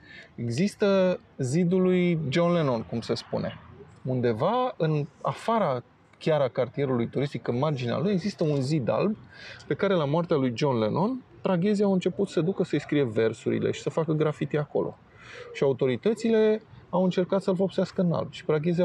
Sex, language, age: male, Romanian, 20-39